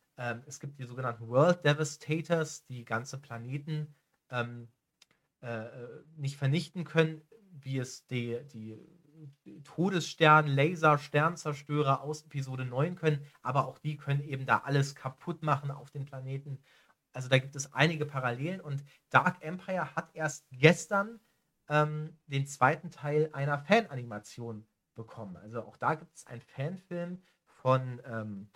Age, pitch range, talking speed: 40-59, 130-155 Hz, 135 wpm